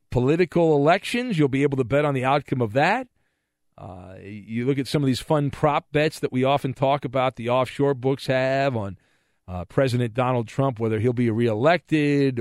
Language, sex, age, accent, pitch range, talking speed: English, male, 40-59, American, 125-180 Hz, 195 wpm